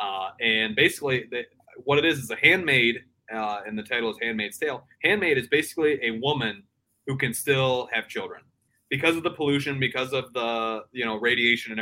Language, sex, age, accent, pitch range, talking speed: English, male, 20-39, American, 110-130 Hz, 195 wpm